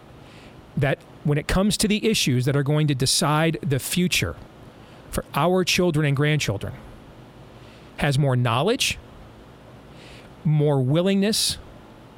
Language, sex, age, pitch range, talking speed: English, male, 40-59, 130-175 Hz, 120 wpm